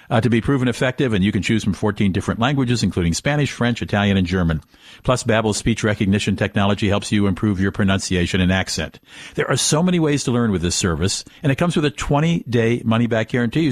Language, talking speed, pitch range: English, 215 wpm, 100-130 Hz